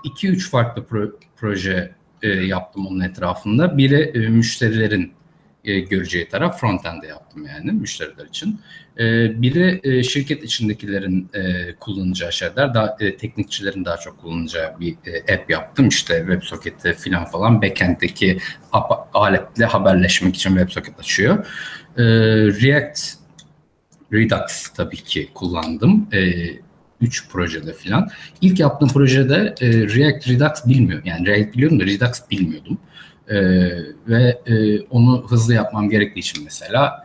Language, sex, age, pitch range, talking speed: Turkish, male, 50-69, 95-125 Hz, 130 wpm